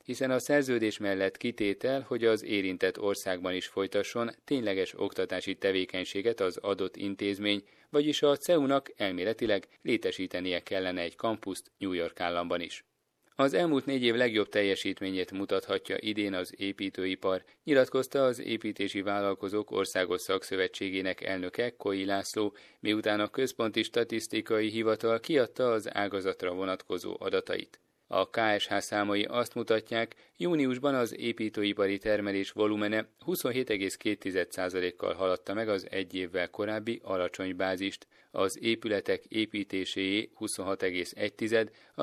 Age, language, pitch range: 30-49, Hungarian, 95-120 Hz